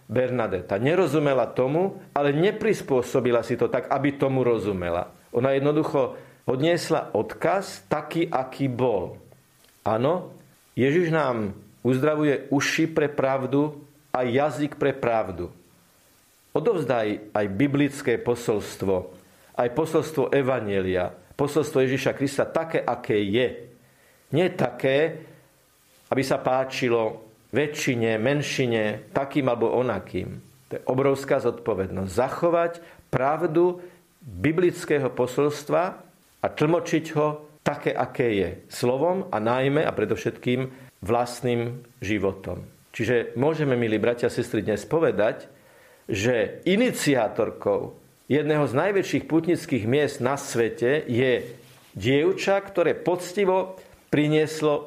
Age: 50-69